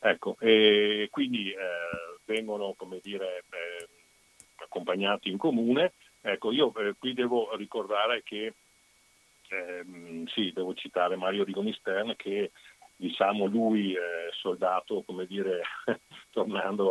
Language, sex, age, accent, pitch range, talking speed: Italian, male, 50-69, native, 95-135 Hz, 115 wpm